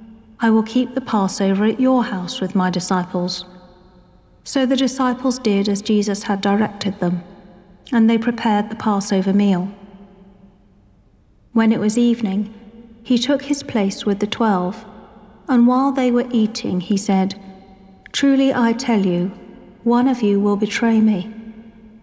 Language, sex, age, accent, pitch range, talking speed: English, female, 40-59, British, 195-235 Hz, 145 wpm